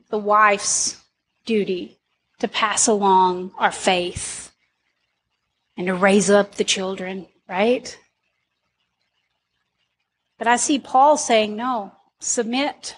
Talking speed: 100 wpm